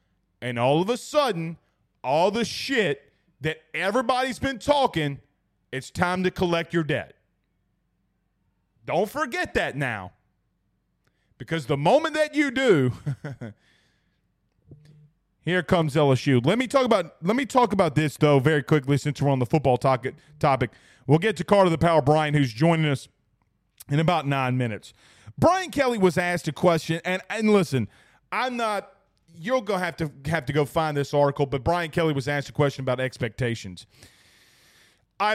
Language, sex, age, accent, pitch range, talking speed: English, male, 30-49, American, 135-180 Hz, 160 wpm